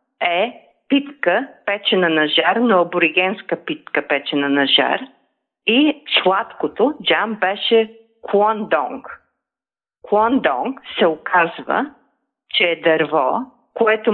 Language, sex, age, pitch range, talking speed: Bulgarian, female, 40-59, 180-230 Hz, 100 wpm